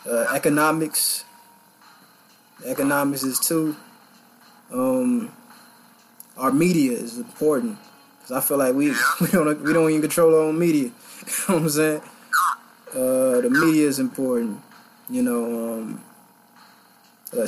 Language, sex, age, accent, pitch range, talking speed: English, male, 20-39, American, 215-250 Hz, 130 wpm